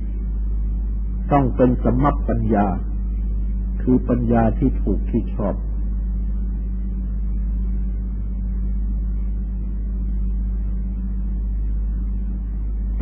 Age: 60-79